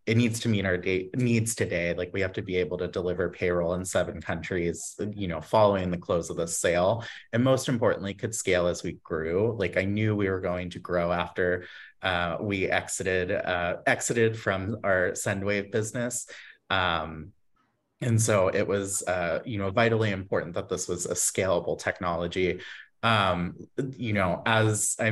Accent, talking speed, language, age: American, 180 wpm, English, 30-49